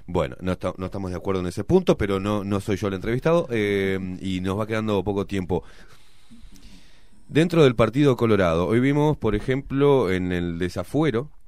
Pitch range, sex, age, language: 90-120 Hz, male, 30-49, Spanish